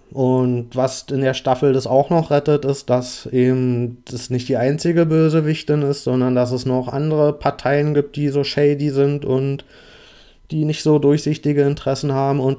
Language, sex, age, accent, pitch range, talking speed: German, male, 30-49, German, 125-140 Hz, 175 wpm